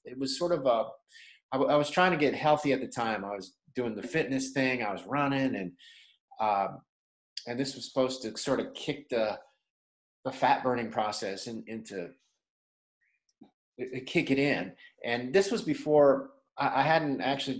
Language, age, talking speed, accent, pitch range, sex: English, 30-49, 175 wpm, American, 120-155 Hz, male